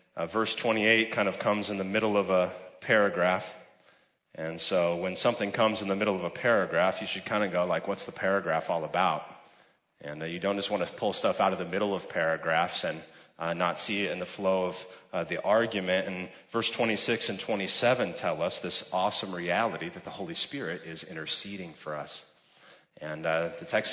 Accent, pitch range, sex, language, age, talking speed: American, 95-140 Hz, male, English, 30-49, 210 wpm